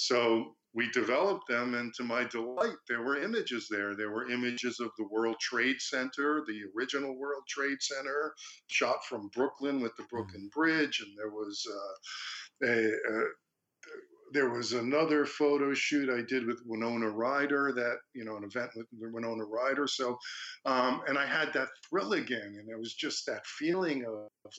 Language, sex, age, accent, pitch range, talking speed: English, male, 50-69, American, 115-150 Hz, 175 wpm